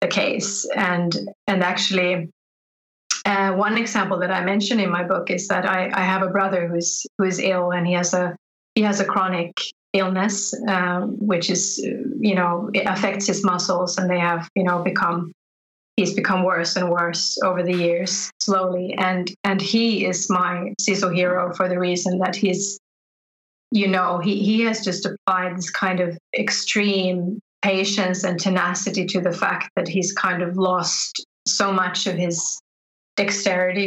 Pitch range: 180-200 Hz